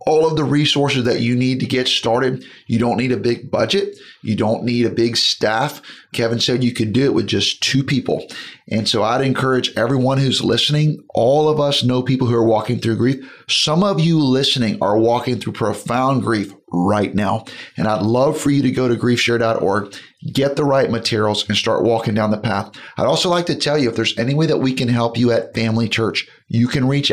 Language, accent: English, American